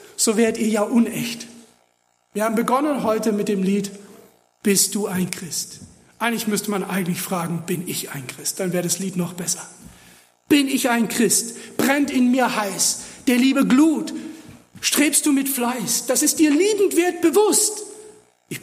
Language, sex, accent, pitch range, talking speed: German, male, German, 170-255 Hz, 170 wpm